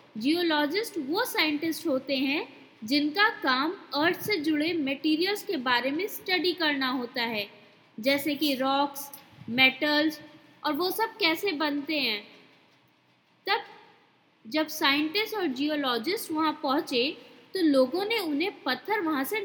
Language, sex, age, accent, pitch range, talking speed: Hindi, female, 20-39, native, 275-370 Hz, 130 wpm